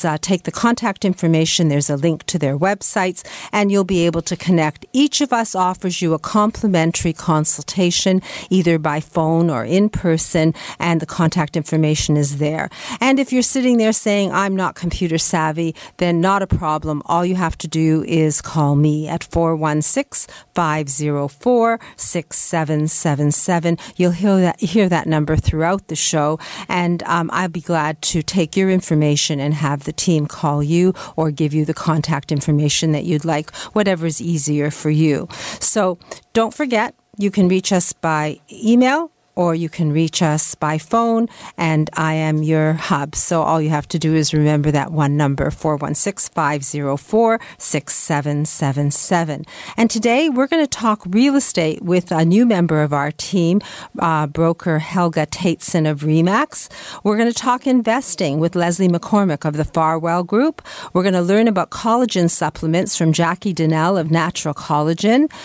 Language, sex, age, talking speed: English, female, 50-69, 160 wpm